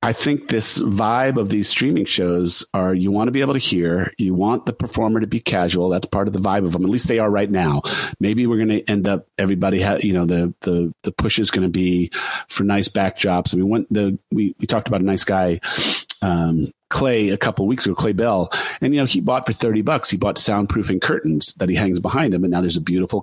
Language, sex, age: English, male, 40-59